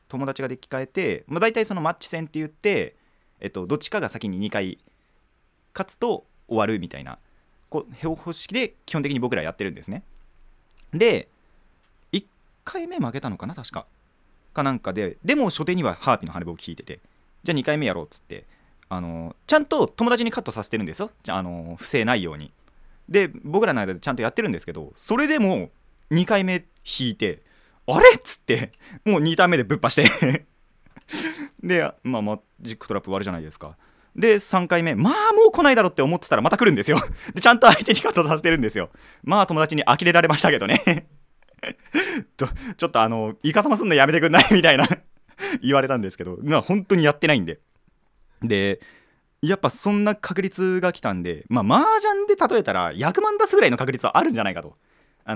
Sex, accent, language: male, native, Japanese